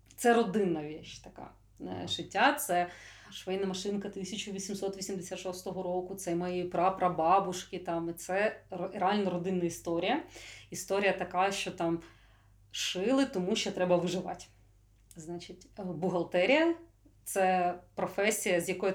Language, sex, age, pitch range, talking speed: Ukrainian, female, 30-49, 175-230 Hz, 115 wpm